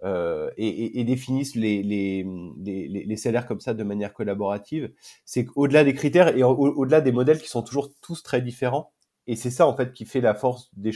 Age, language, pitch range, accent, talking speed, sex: 30-49, French, 110-135 Hz, French, 230 wpm, male